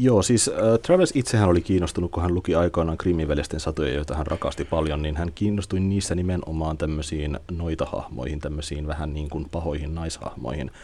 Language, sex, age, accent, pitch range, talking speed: Finnish, male, 30-49, native, 80-110 Hz, 165 wpm